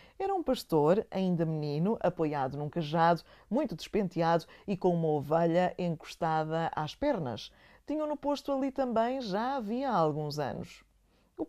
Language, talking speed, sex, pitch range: English, 145 wpm, female, 165-245 Hz